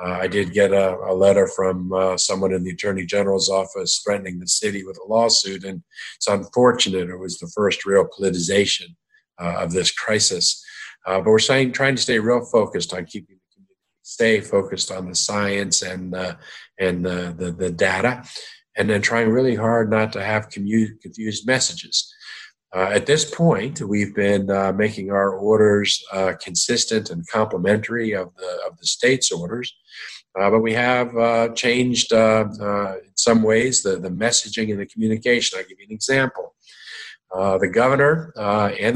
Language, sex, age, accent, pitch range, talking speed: English, male, 50-69, American, 95-115 Hz, 180 wpm